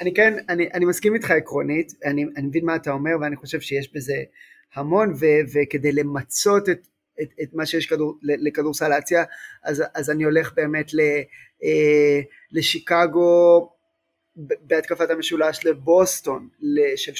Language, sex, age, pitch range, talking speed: Hebrew, male, 20-39, 150-180 Hz, 145 wpm